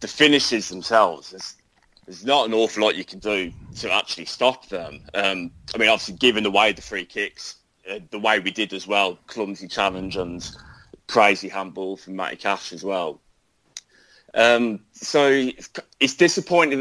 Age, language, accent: 30-49, English, British